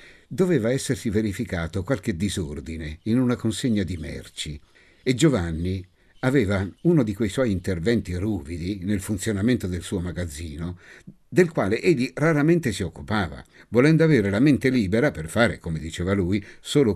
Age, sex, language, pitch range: 60-79, male, Italian, 90-140 Hz